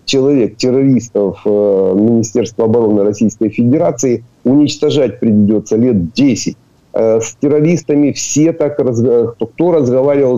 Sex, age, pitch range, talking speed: male, 50-69, 110-135 Hz, 105 wpm